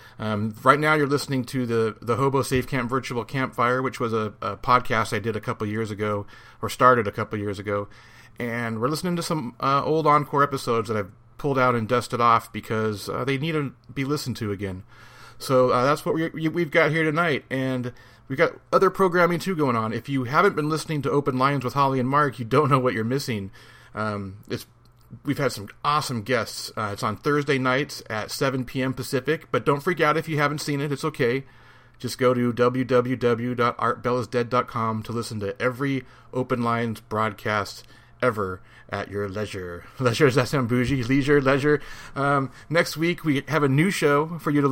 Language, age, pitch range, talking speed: English, 30-49, 115-140 Hz, 195 wpm